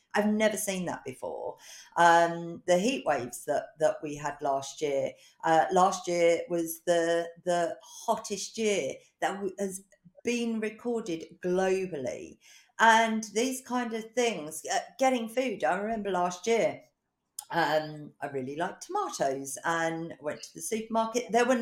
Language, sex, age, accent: English, female, 50-69, British